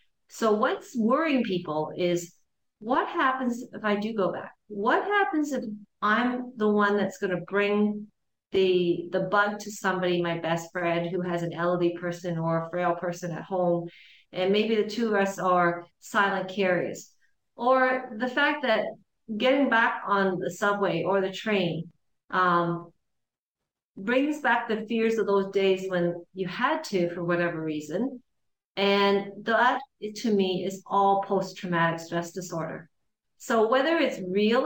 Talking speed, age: 155 wpm, 40-59